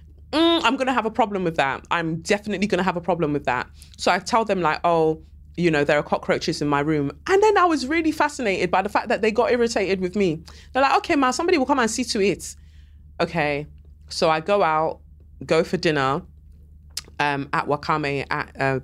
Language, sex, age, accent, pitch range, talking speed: English, female, 20-39, British, 135-195 Hz, 225 wpm